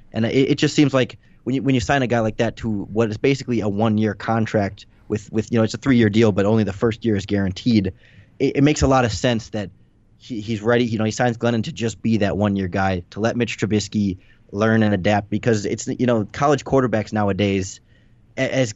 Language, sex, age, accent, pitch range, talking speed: English, male, 20-39, American, 105-120 Hz, 240 wpm